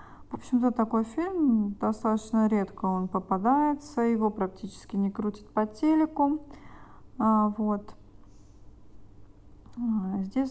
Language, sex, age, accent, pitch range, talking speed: Russian, female, 20-39, native, 190-230 Hz, 90 wpm